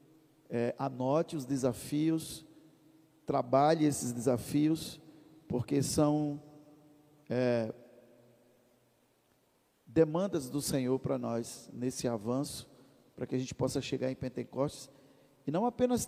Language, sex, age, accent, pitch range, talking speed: Portuguese, male, 50-69, Brazilian, 125-150 Hz, 95 wpm